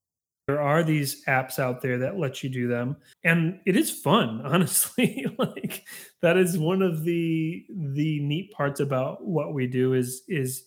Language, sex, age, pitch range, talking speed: English, male, 30-49, 130-170 Hz, 175 wpm